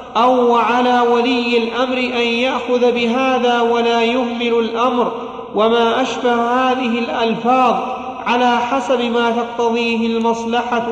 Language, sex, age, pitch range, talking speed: Arabic, male, 40-59, 225-245 Hz, 105 wpm